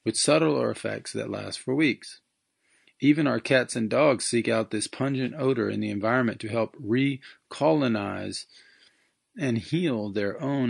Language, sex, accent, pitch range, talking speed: English, male, American, 110-130 Hz, 150 wpm